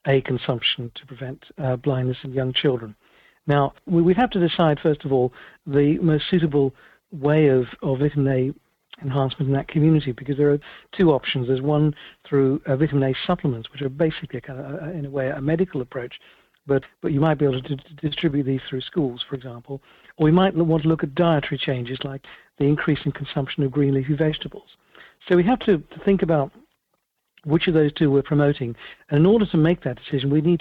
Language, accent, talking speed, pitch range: English, British, 215 wpm, 135-160 Hz